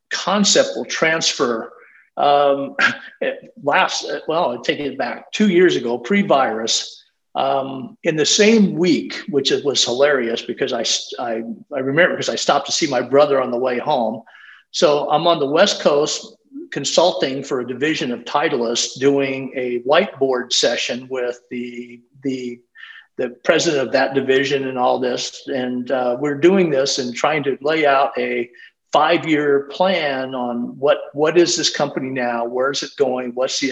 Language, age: English, 50-69